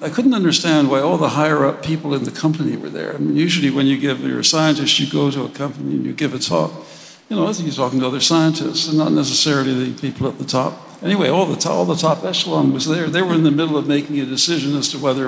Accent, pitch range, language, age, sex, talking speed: American, 135-160 Hz, English, 60-79, male, 280 wpm